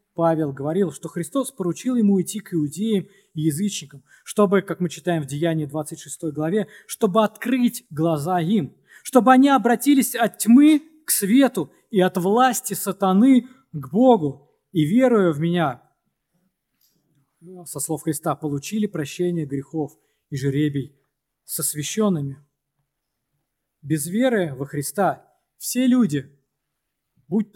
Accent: native